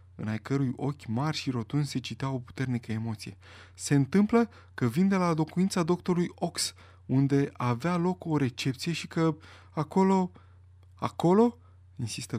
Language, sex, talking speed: Romanian, male, 150 wpm